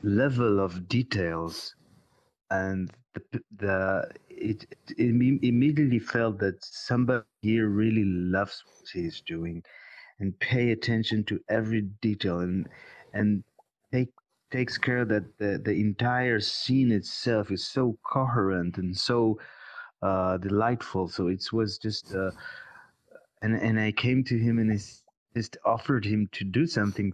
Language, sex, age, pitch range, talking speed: English, male, 30-49, 95-120 Hz, 135 wpm